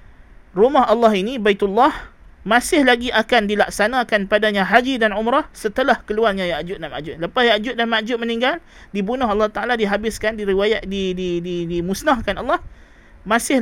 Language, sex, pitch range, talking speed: Malay, male, 180-225 Hz, 150 wpm